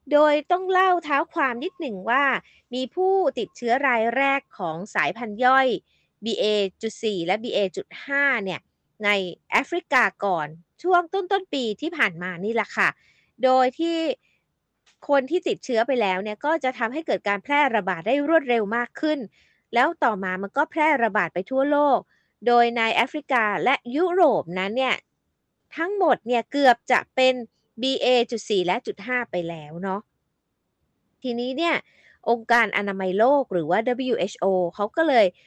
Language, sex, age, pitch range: Thai, female, 20-39, 210-290 Hz